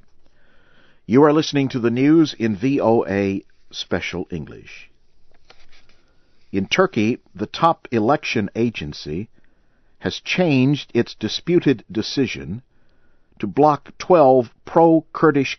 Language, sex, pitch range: English, male, 105-140 Hz